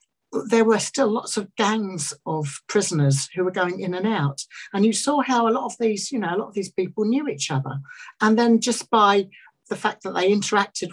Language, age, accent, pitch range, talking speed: English, 60-79, British, 155-210 Hz, 225 wpm